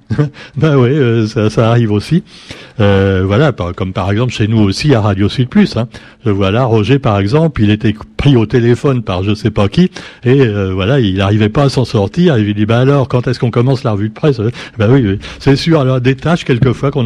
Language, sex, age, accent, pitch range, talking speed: French, male, 60-79, French, 110-140 Hz, 235 wpm